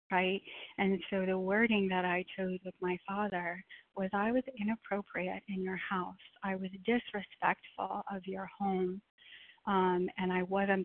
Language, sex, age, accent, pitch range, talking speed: English, female, 30-49, American, 185-200 Hz, 155 wpm